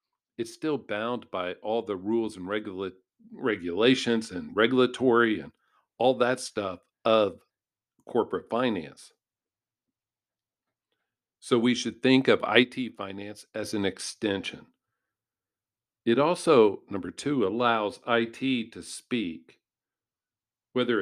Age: 50-69